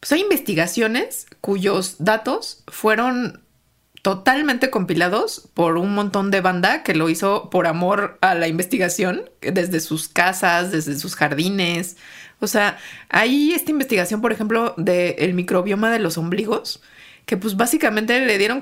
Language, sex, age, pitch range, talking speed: Spanish, female, 30-49, 170-235 Hz, 140 wpm